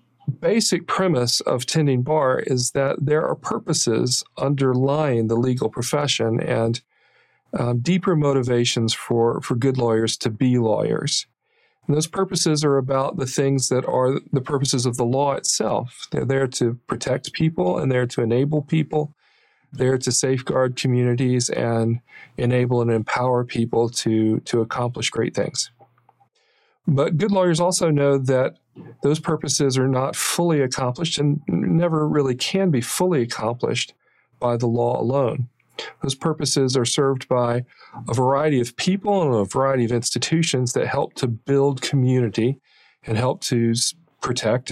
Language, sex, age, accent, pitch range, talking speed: English, male, 40-59, American, 120-150 Hz, 150 wpm